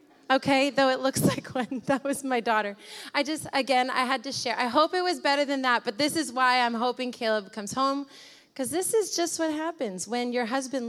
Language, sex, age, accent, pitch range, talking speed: English, female, 30-49, American, 225-270 Hz, 230 wpm